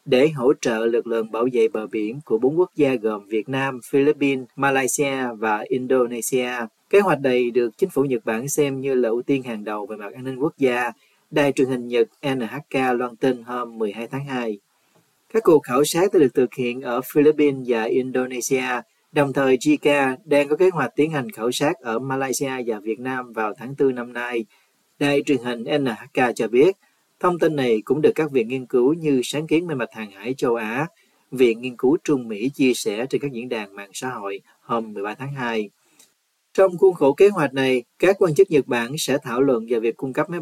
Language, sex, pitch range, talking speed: Vietnamese, male, 120-140 Hz, 215 wpm